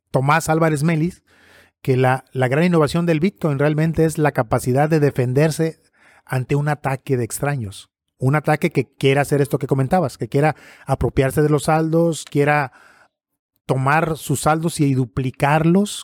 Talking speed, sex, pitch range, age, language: 155 wpm, male, 135-165 Hz, 30-49, Spanish